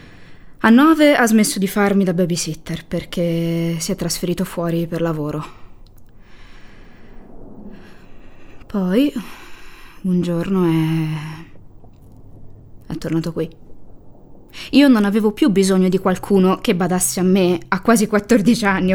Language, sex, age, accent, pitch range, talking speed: Italian, female, 20-39, native, 130-205 Hz, 115 wpm